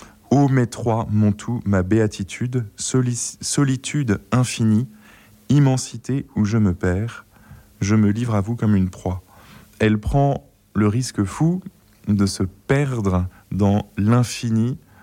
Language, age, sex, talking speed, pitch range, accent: French, 20-39, male, 130 wpm, 100-120 Hz, French